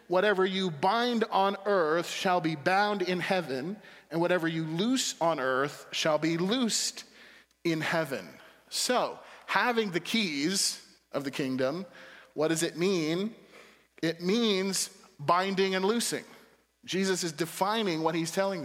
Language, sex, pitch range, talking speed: English, male, 155-195 Hz, 140 wpm